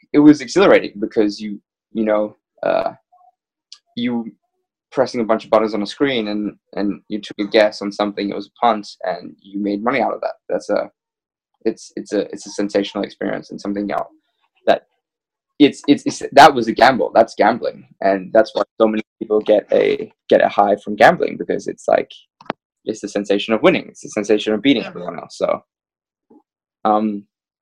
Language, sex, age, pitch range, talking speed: English, male, 20-39, 105-135 Hz, 190 wpm